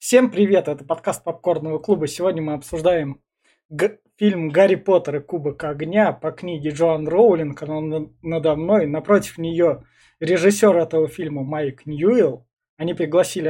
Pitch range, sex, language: 155-190 Hz, male, Russian